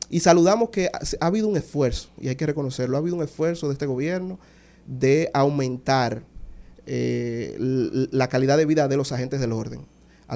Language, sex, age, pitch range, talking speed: Spanish, male, 30-49, 125-155 Hz, 180 wpm